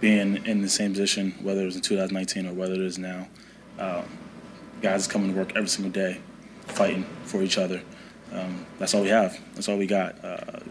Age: 20-39